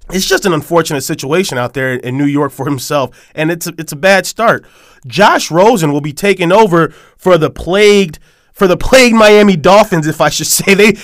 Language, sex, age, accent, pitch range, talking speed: English, male, 20-39, American, 150-190 Hz, 200 wpm